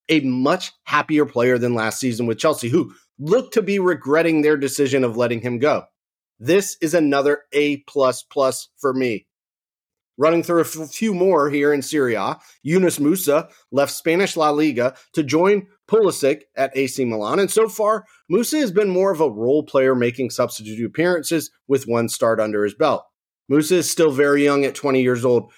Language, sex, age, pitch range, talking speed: English, male, 30-49, 125-170 Hz, 180 wpm